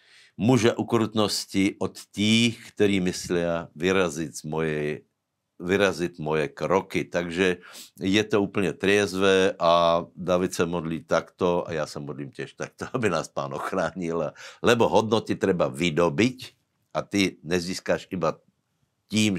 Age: 60-79